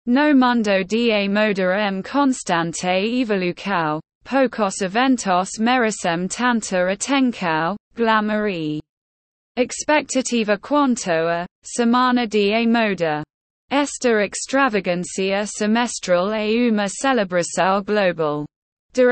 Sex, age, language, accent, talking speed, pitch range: female, 20-39, English, British, 90 wpm, 180-240 Hz